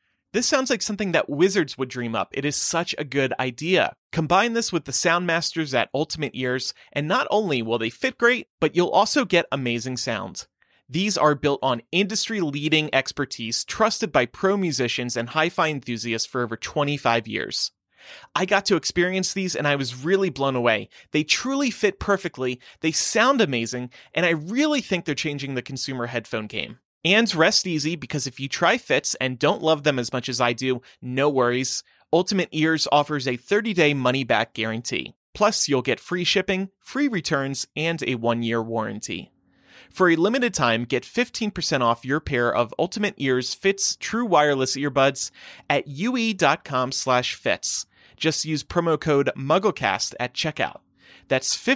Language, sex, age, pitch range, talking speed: English, male, 30-49, 125-185 Hz, 170 wpm